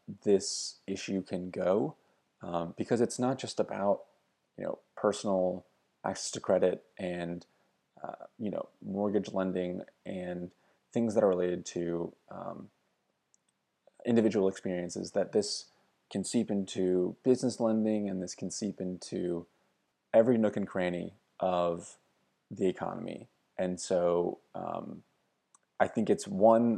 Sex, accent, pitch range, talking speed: male, American, 90-110 Hz, 130 wpm